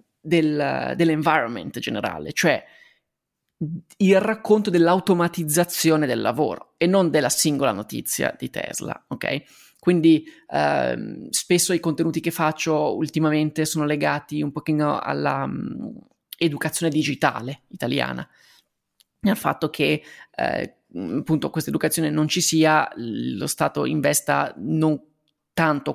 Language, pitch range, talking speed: Italian, 150-165 Hz, 110 wpm